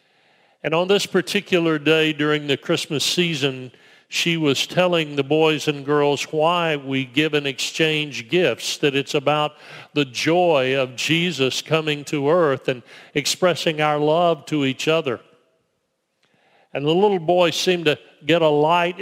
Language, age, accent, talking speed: English, 50-69, American, 150 wpm